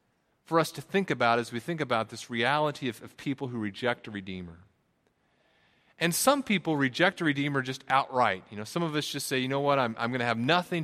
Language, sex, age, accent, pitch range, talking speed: English, male, 40-59, American, 100-140 Hz, 235 wpm